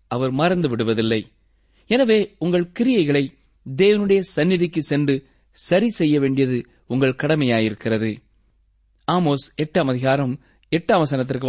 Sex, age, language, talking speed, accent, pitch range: male, 30-49, Tamil, 90 wpm, native, 130-185 Hz